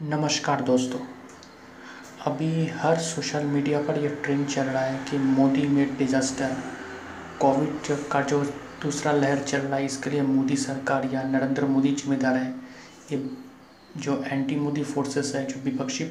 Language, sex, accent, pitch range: Hindi, male, native, 135-145 Hz